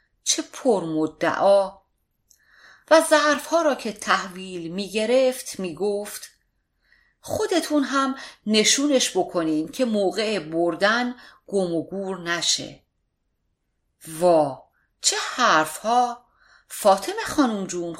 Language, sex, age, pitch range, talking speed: Persian, female, 40-59, 165-250 Hz, 90 wpm